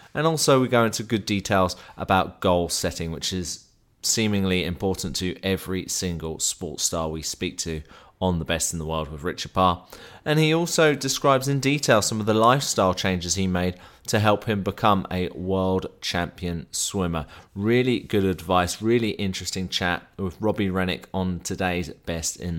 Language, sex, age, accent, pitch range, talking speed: English, male, 30-49, British, 90-110 Hz, 175 wpm